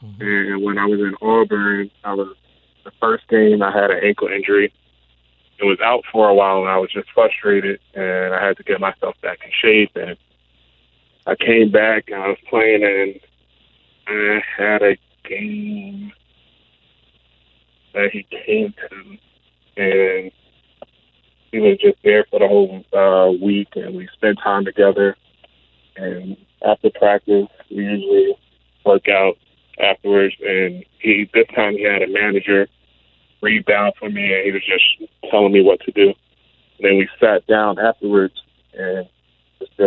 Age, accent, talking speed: 20-39, American, 155 wpm